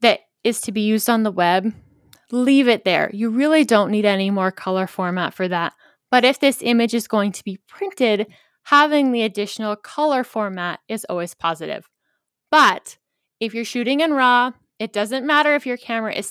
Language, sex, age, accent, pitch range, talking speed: English, female, 10-29, American, 190-240 Hz, 185 wpm